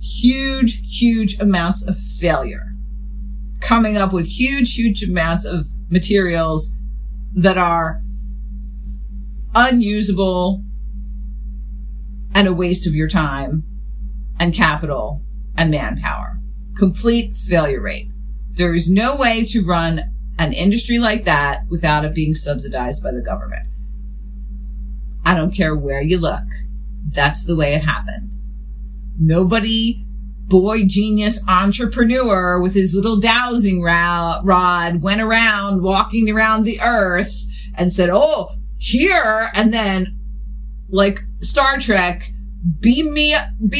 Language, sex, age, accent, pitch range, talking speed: English, female, 40-59, American, 145-210 Hz, 115 wpm